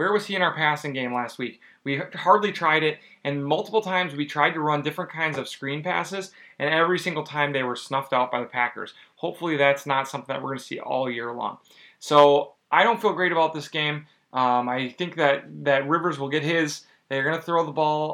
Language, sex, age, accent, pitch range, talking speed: English, male, 30-49, American, 135-165 Hz, 235 wpm